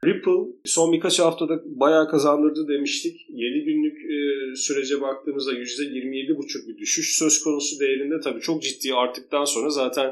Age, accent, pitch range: 40-59, native, 135-185 Hz